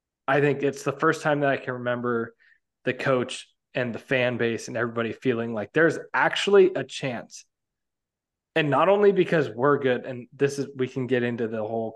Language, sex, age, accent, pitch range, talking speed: English, male, 20-39, American, 115-140 Hz, 195 wpm